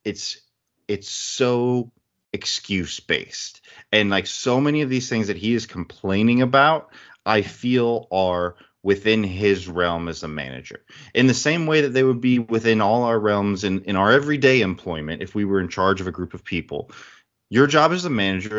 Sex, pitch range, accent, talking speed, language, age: male, 95-125 Hz, American, 185 wpm, English, 30-49